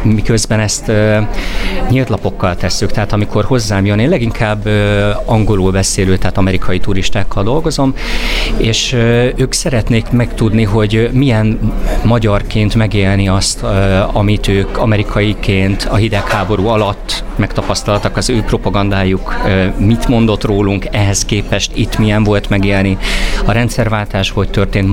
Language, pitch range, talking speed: Hungarian, 95-110 Hz, 130 wpm